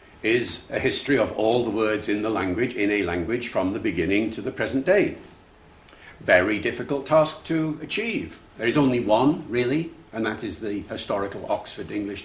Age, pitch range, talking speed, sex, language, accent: 60-79, 105-125 Hz, 180 wpm, male, English, British